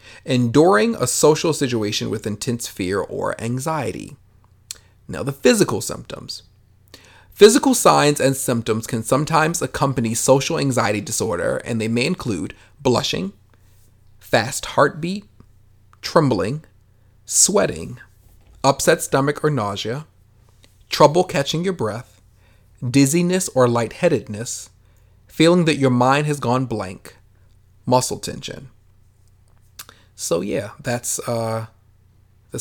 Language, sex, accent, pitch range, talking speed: English, male, American, 105-145 Hz, 105 wpm